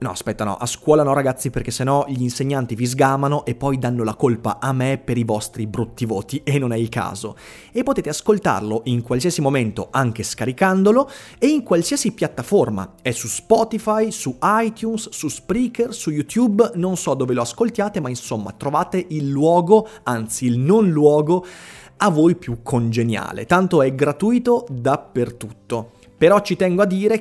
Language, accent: Italian, native